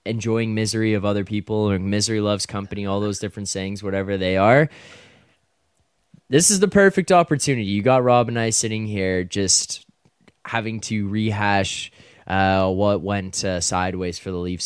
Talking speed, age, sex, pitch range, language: 165 wpm, 20-39, male, 95-110 Hz, English